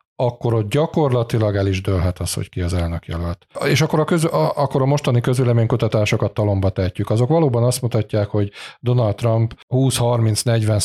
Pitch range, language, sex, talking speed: 100-120 Hz, Hungarian, male, 165 wpm